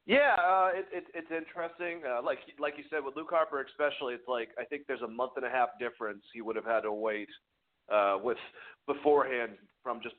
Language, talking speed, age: English, 220 wpm, 40-59